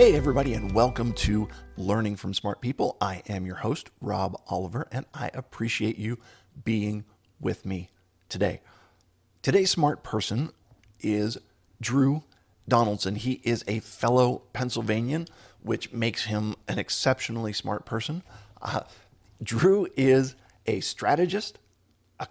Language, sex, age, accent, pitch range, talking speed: English, male, 40-59, American, 100-125 Hz, 125 wpm